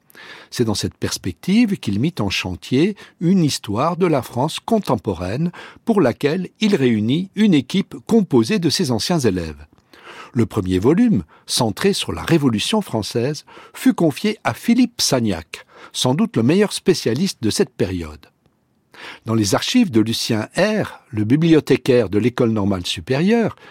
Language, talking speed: French, 145 wpm